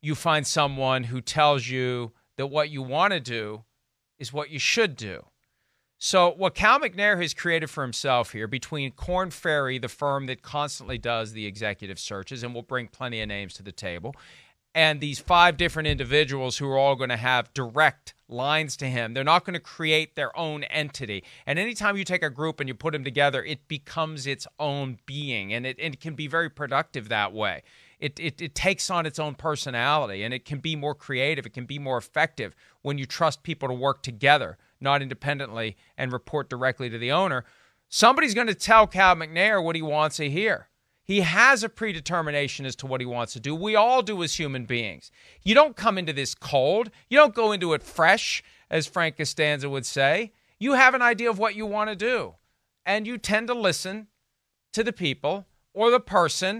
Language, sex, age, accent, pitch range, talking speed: English, male, 40-59, American, 130-175 Hz, 205 wpm